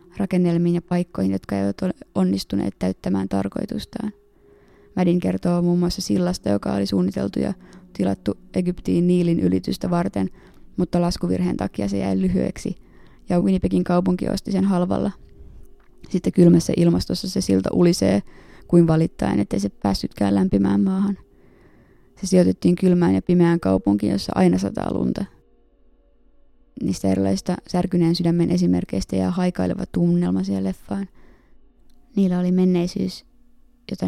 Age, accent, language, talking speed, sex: 20-39, native, Finnish, 125 wpm, female